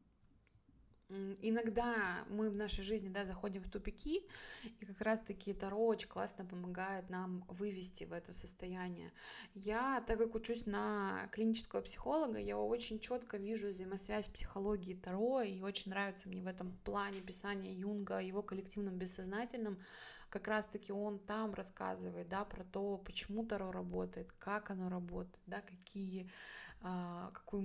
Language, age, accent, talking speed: Russian, 20-39, native, 140 wpm